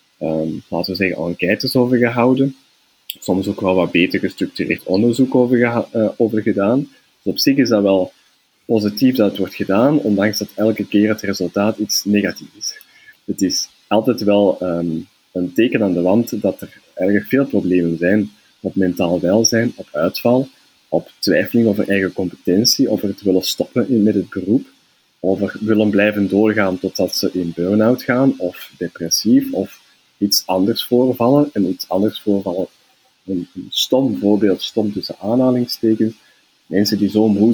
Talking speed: 155 wpm